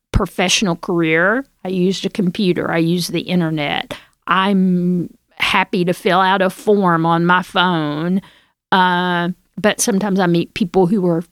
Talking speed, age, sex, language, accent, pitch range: 150 wpm, 50-69, female, English, American, 175-210 Hz